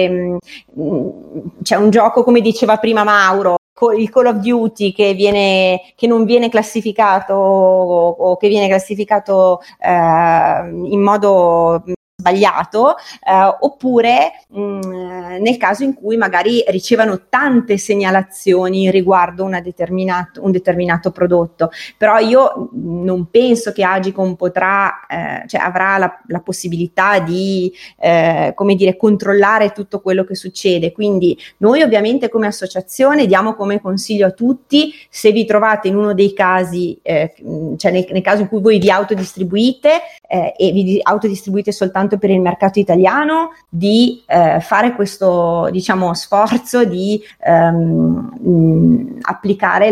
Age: 30-49